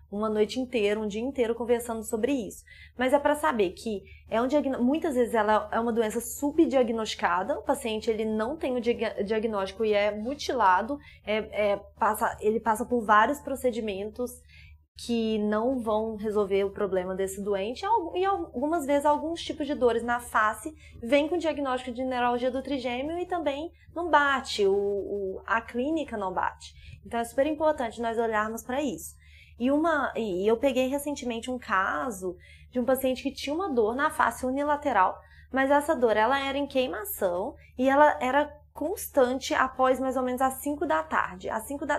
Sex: female